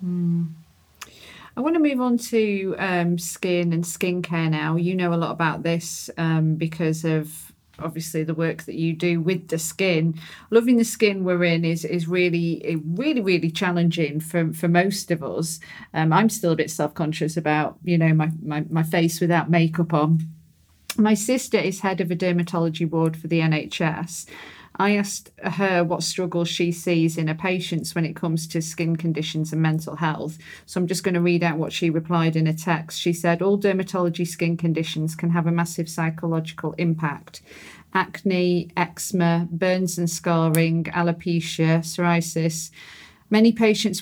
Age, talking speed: 40-59, 170 wpm